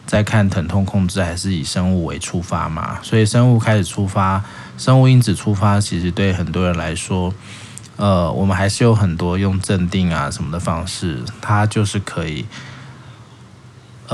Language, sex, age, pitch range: Chinese, male, 20-39, 95-115 Hz